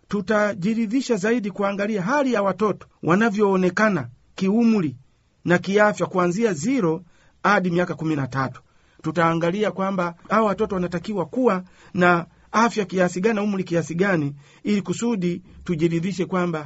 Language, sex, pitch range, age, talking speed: Swahili, male, 160-205 Hz, 50-69, 115 wpm